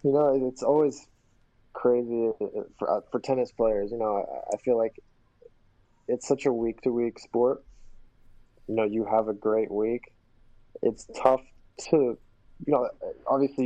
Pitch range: 110-125 Hz